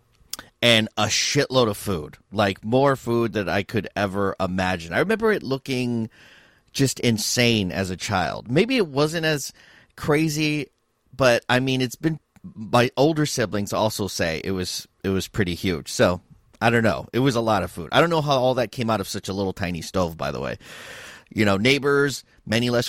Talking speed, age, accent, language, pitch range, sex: 200 wpm, 30-49, American, English, 105-150 Hz, male